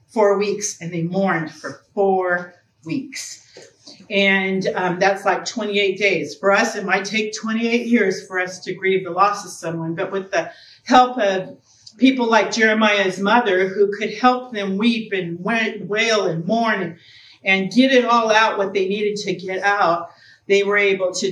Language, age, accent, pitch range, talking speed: English, 40-59, American, 180-220 Hz, 175 wpm